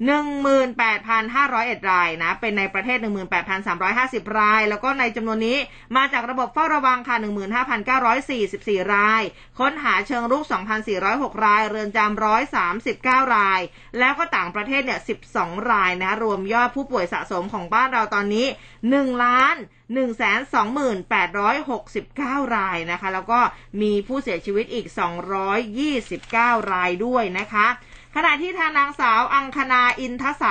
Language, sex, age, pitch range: Thai, female, 20-39, 210-270 Hz